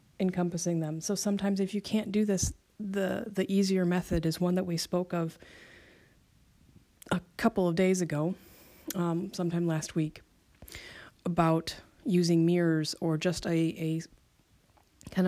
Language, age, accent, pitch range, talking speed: English, 30-49, American, 160-200 Hz, 140 wpm